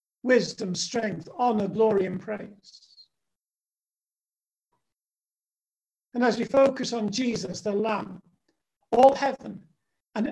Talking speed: 100 wpm